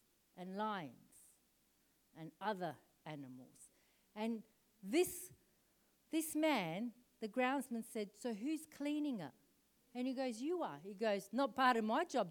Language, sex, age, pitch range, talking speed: English, female, 50-69, 225-340 Hz, 135 wpm